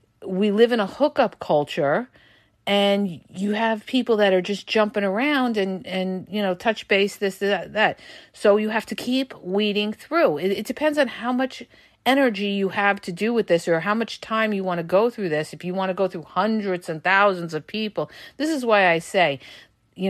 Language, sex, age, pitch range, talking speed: English, female, 50-69, 175-225 Hz, 210 wpm